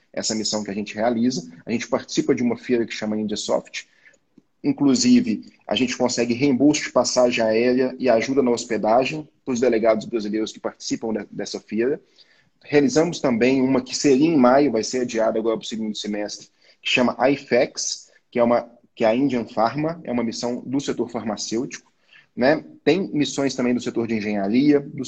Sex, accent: male, Brazilian